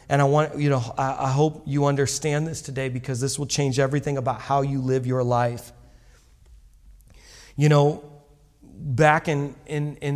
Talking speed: 165 wpm